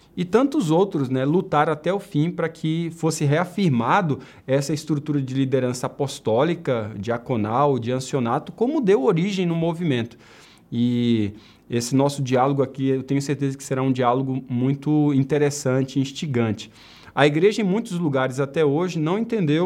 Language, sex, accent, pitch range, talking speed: Portuguese, male, Brazilian, 125-165 Hz, 150 wpm